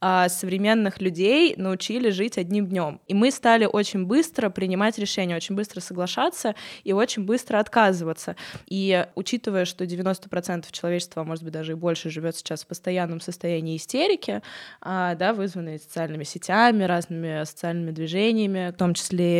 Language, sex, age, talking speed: Russian, female, 20-39, 150 wpm